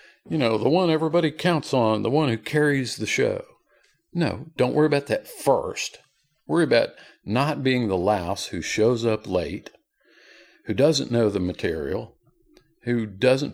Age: 50-69